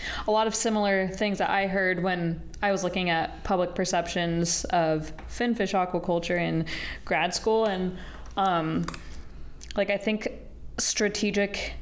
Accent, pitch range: American, 165-200 Hz